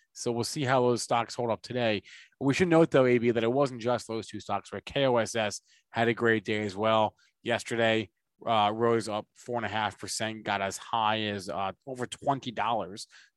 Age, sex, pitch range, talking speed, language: 20-39, male, 110-125 Hz, 190 wpm, English